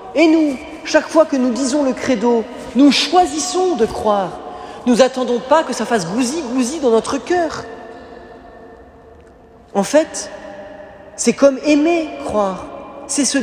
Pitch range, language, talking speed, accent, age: 210-275 Hz, French, 145 wpm, French, 40-59